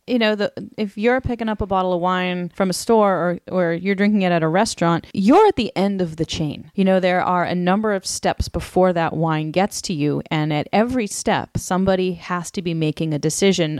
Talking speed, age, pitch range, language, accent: 235 wpm, 30-49, 155-185 Hz, English, American